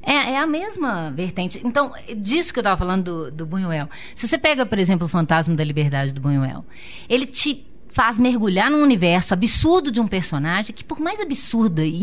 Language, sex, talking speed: Portuguese, female, 200 wpm